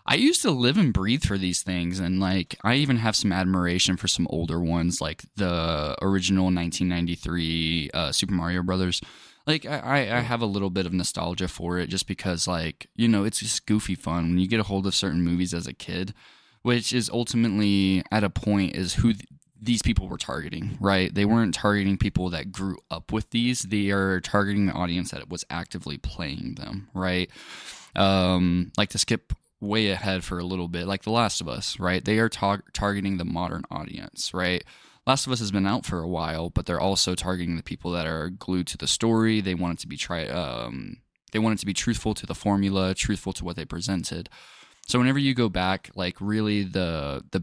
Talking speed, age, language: 210 wpm, 10-29, English